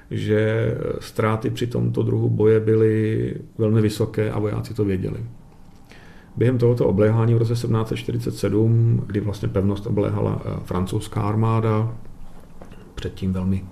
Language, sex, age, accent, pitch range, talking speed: Czech, male, 40-59, native, 100-115 Hz, 120 wpm